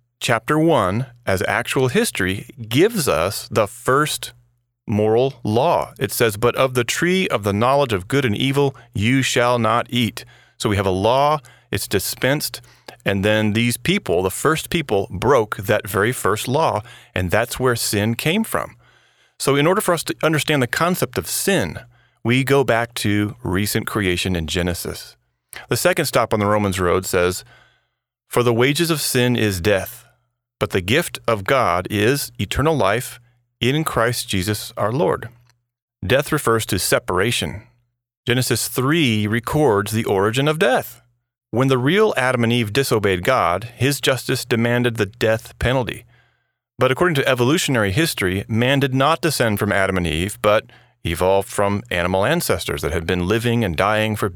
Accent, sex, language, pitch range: American, male, English, 105-135 Hz